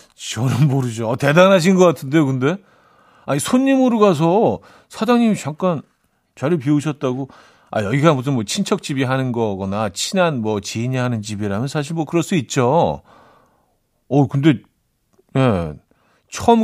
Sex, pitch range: male, 105-155 Hz